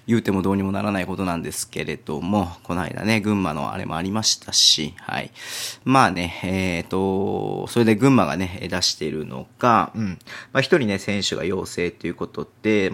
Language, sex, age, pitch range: Japanese, male, 40-59, 95-120 Hz